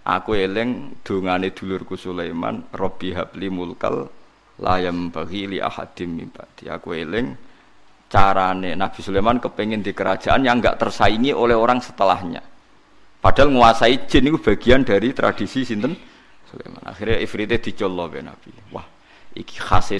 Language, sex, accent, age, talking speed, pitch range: Indonesian, male, native, 50-69, 130 wpm, 90-120 Hz